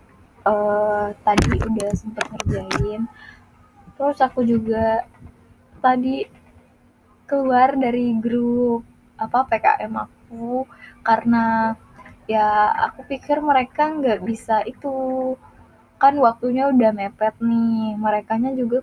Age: 10-29